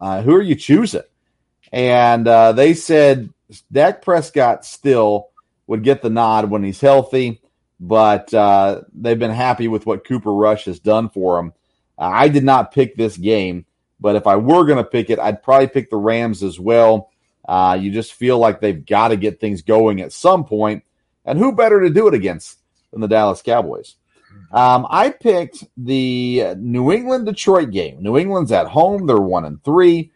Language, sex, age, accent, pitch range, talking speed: English, male, 40-59, American, 105-135 Hz, 185 wpm